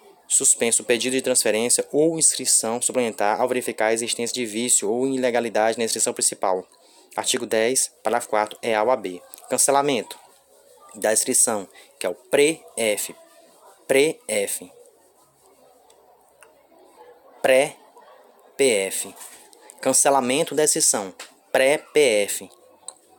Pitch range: 120-170 Hz